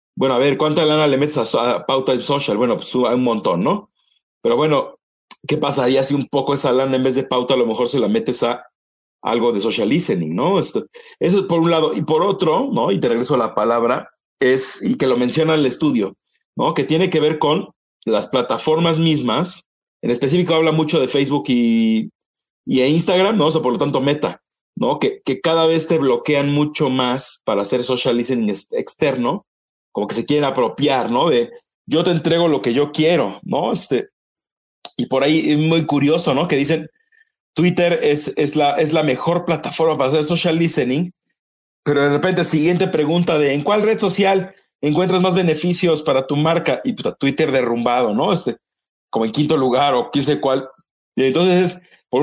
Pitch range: 135-170 Hz